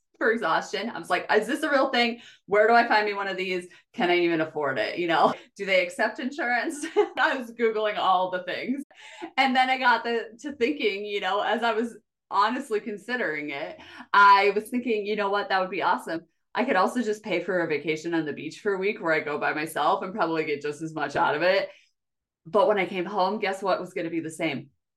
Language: English